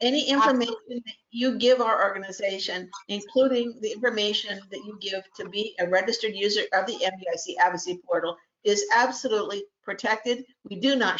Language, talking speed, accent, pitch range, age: English, 155 wpm, American, 205-275 Hz, 50-69